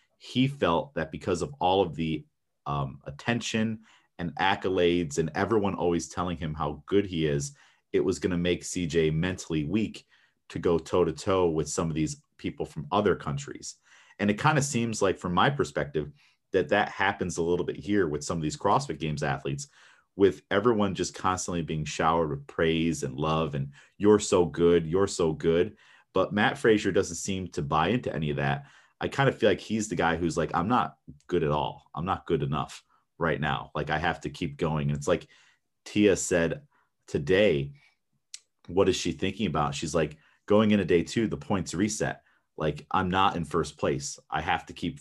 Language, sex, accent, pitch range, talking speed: English, male, American, 75-95 Hz, 200 wpm